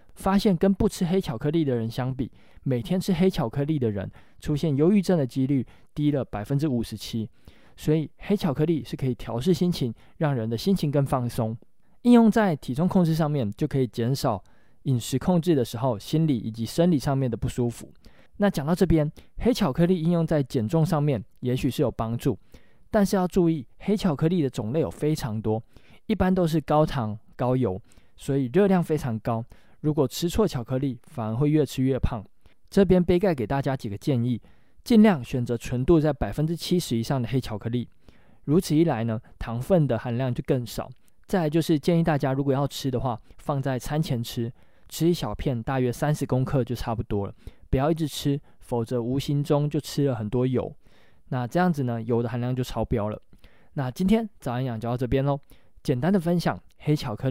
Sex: male